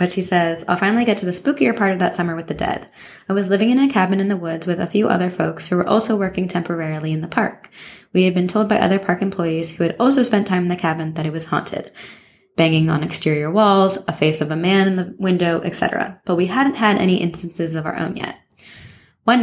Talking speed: 255 wpm